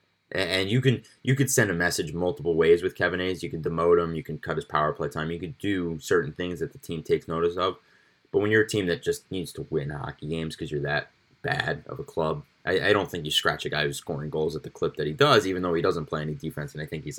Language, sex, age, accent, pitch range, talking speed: English, male, 20-39, American, 80-115 Hz, 285 wpm